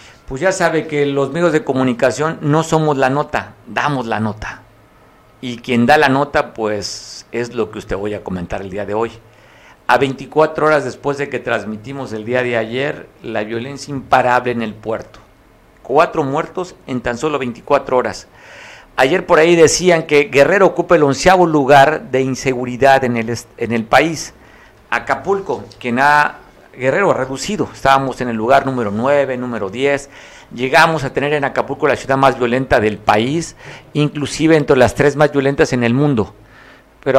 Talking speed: 175 wpm